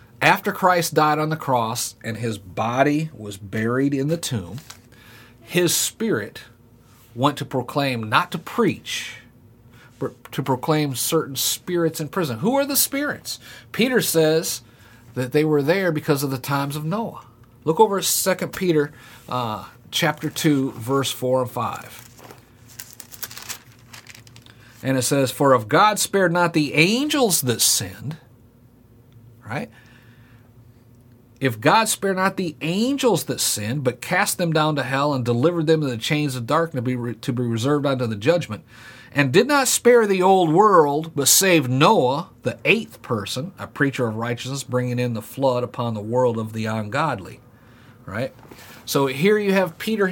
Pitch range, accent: 120-160 Hz, American